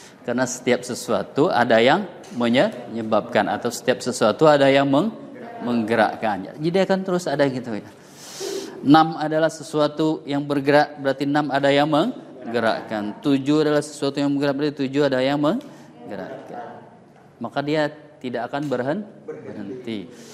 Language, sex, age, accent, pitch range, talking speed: Indonesian, male, 20-39, native, 115-160 Hz, 125 wpm